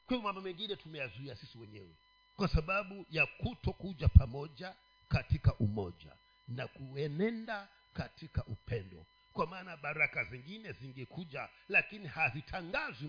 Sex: male